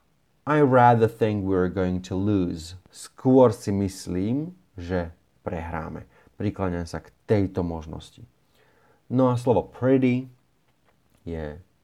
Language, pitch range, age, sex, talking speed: Slovak, 90-120 Hz, 30-49, male, 115 wpm